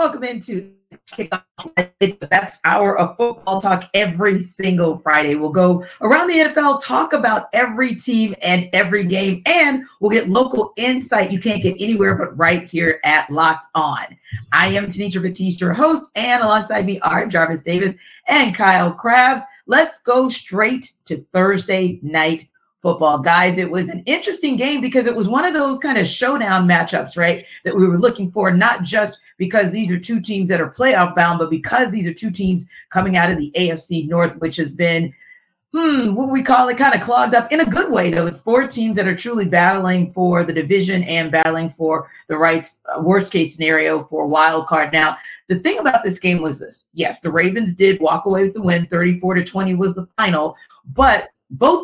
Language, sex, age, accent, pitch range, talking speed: English, female, 40-59, American, 170-225 Hz, 200 wpm